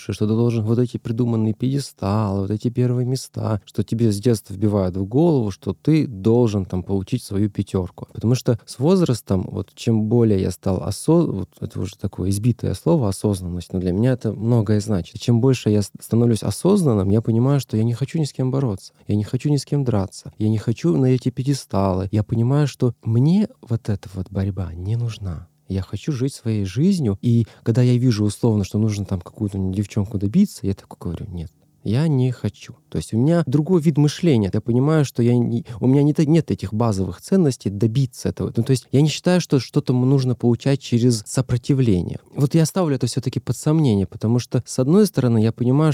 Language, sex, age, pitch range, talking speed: Russian, male, 20-39, 105-135 Hz, 200 wpm